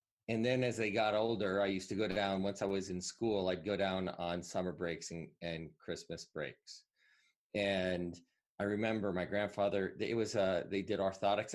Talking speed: 190 wpm